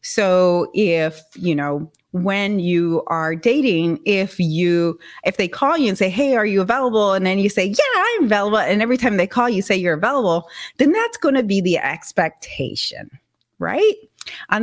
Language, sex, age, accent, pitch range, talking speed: English, female, 30-49, American, 170-255 Hz, 185 wpm